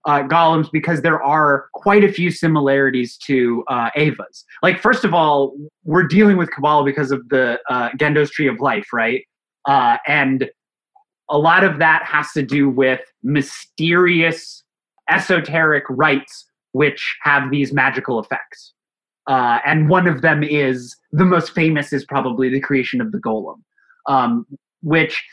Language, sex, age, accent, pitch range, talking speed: English, male, 30-49, American, 140-175 Hz, 155 wpm